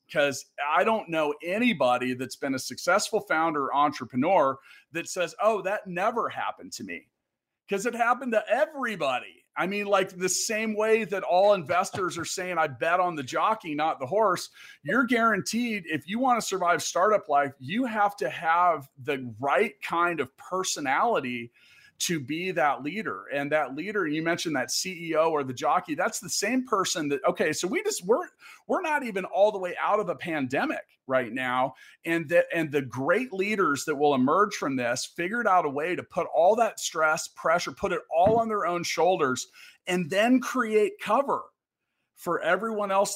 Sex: male